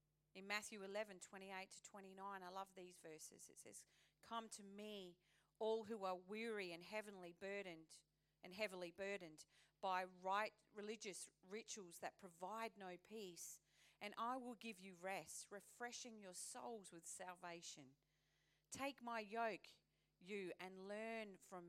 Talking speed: 145 wpm